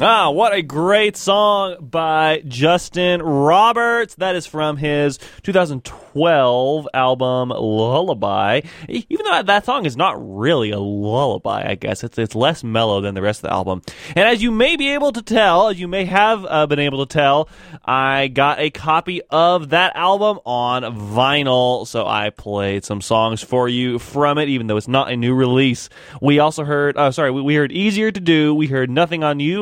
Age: 20-39